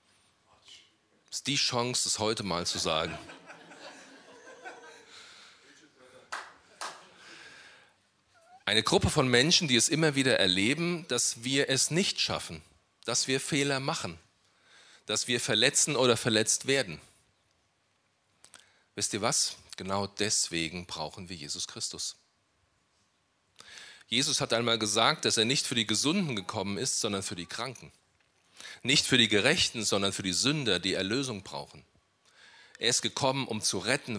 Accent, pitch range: German, 100-140 Hz